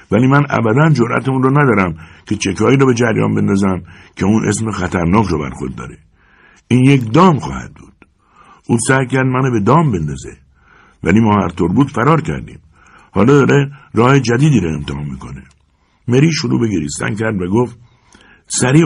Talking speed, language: 160 wpm, Persian